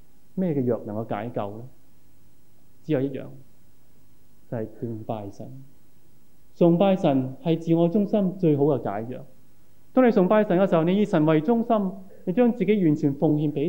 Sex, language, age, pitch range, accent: male, Chinese, 20-39, 115-160 Hz, native